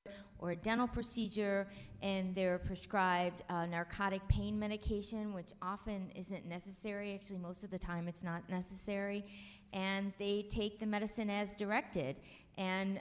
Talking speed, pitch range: 145 wpm, 175-200 Hz